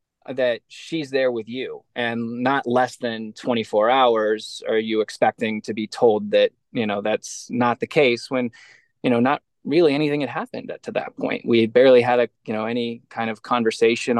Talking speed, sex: 195 wpm, male